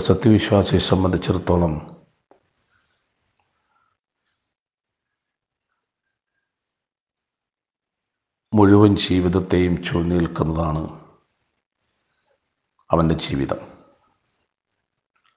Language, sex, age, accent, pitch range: Malayalam, male, 50-69, native, 85-95 Hz